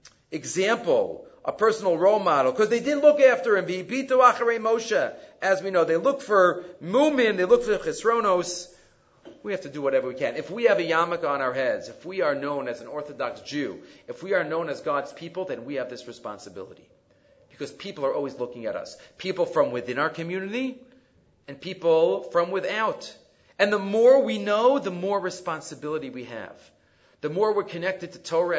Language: English